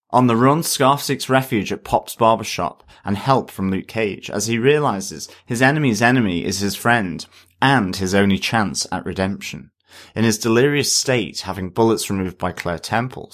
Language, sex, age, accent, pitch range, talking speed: English, male, 30-49, British, 95-125 Hz, 175 wpm